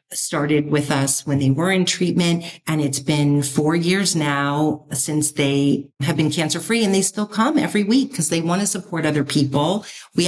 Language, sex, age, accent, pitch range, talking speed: English, female, 50-69, American, 150-190 Hz, 195 wpm